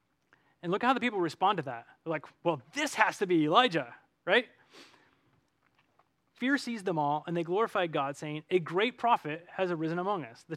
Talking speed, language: 195 wpm, English